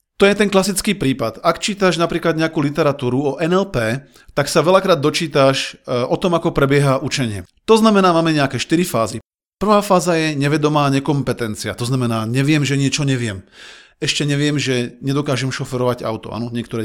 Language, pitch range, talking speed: Slovak, 120-155 Hz, 165 wpm